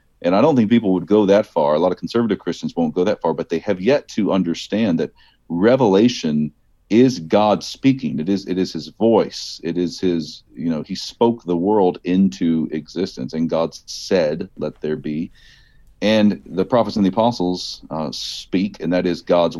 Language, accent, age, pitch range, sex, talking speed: English, American, 40-59, 85-105 Hz, male, 195 wpm